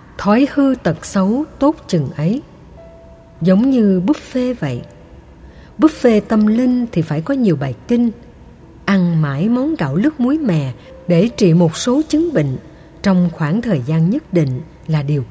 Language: Vietnamese